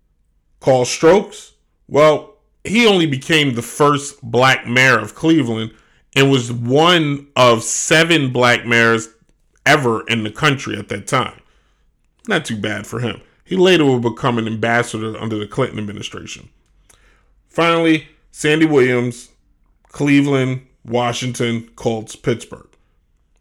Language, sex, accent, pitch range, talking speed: English, male, American, 115-155 Hz, 125 wpm